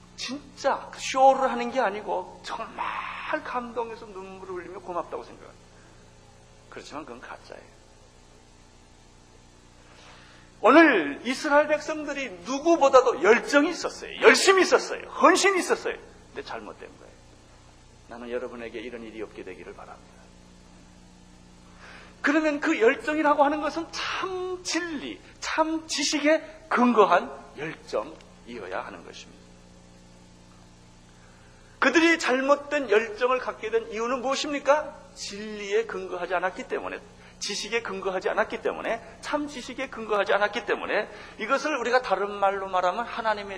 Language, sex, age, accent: Korean, male, 40-59, native